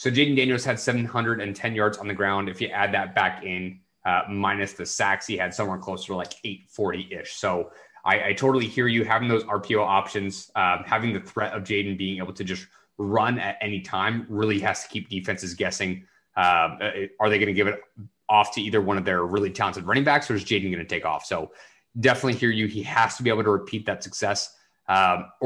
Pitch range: 100-125 Hz